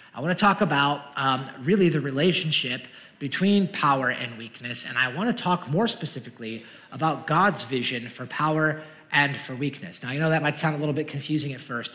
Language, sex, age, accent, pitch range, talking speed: English, male, 30-49, American, 130-165 Hz, 200 wpm